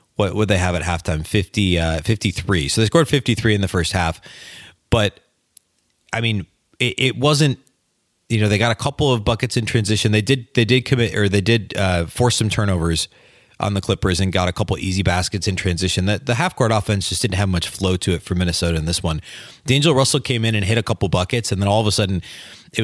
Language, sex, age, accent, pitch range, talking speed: English, male, 30-49, American, 90-115 Hz, 235 wpm